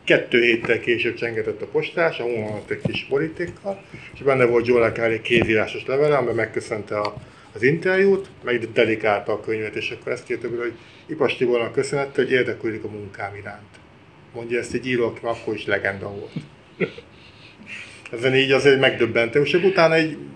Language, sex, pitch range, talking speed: Hungarian, male, 115-140 Hz, 155 wpm